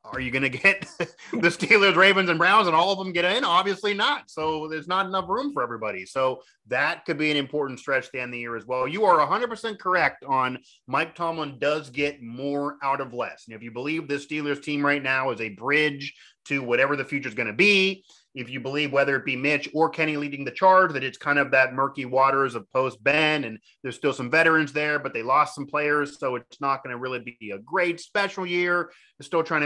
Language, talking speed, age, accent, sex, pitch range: English, 240 wpm, 30-49, American, male, 130-165 Hz